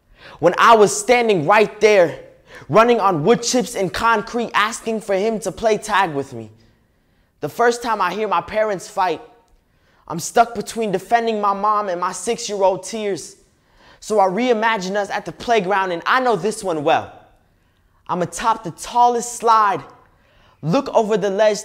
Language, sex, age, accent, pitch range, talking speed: English, male, 20-39, American, 185-235 Hz, 165 wpm